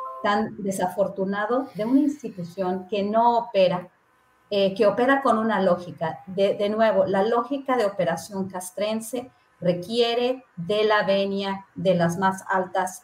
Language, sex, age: Spanish, female, 40-59